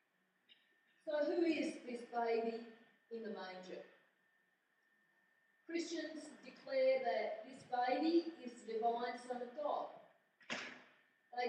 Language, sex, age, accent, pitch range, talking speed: English, female, 40-59, Australian, 220-290 Hz, 105 wpm